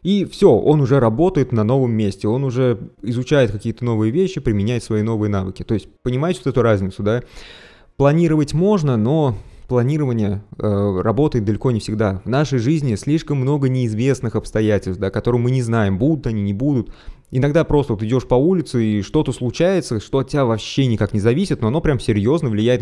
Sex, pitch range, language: male, 110-145 Hz, Russian